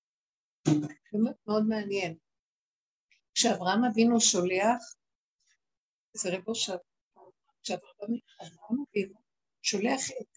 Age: 50-69